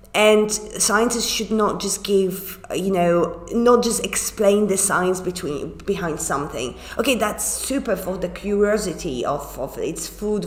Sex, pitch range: female, 180-215 Hz